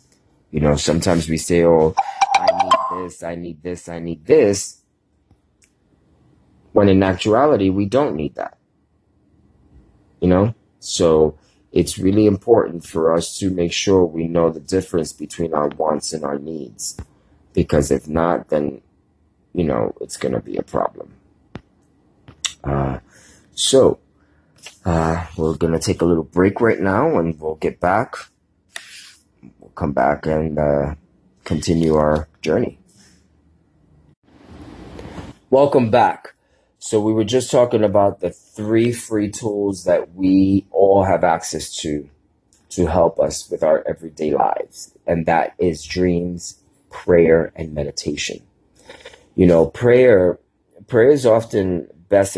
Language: English